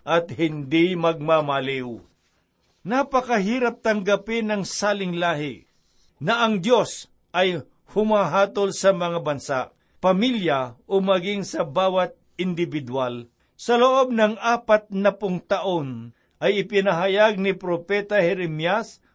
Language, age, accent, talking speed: Filipino, 60-79, native, 105 wpm